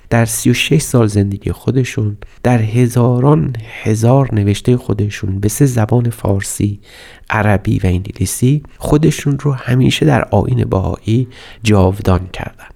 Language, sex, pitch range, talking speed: Persian, male, 100-130 Hz, 120 wpm